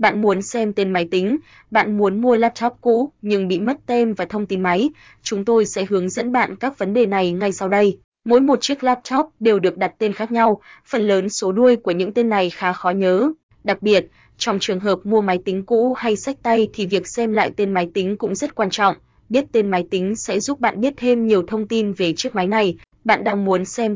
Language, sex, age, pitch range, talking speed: Vietnamese, female, 20-39, 195-230 Hz, 240 wpm